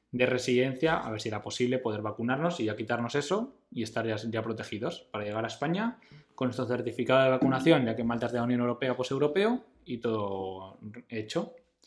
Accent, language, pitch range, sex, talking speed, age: Spanish, Spanish, 120-145 Hz, male, 200 wpm, 20-39